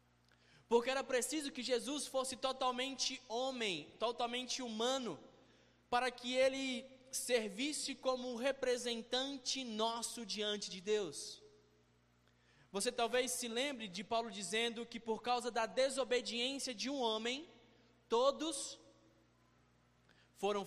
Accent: Brazilian